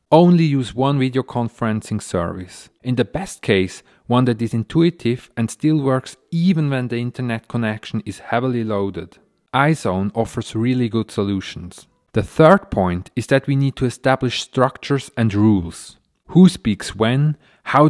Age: 30-49